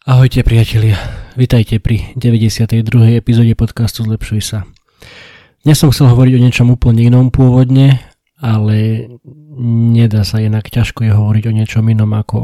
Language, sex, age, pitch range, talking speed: Slovak, male, 20-39, 105-120 Hz, 140 wpm